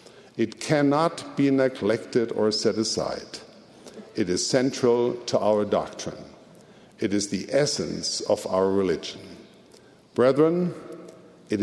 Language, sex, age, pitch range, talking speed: English, male, 60-79, 110-155 Hz, 115 wpm